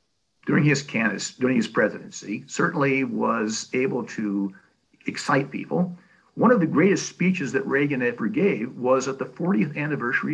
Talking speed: 150 wpm